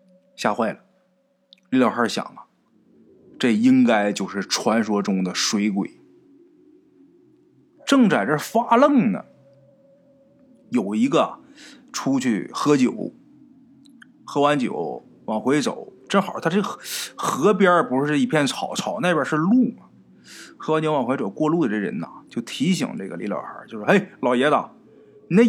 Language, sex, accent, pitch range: Chinese, male, native, 155-250 Hz